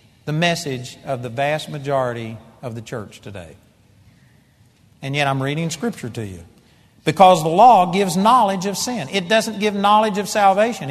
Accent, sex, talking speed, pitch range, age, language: American, male, 165 wpm, 150-215 Hz, 50-69, English